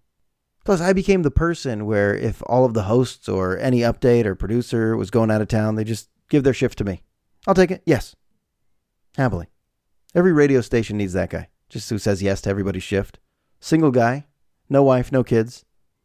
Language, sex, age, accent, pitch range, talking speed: English, male, 40-59, American, 100-140 Hz, 195 wpm